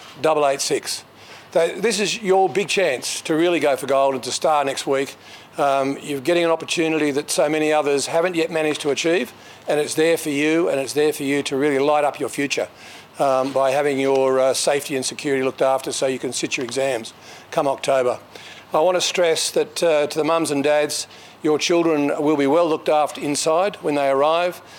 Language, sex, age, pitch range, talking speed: English, male, 50-69, 135-160 Hz, 205 wpm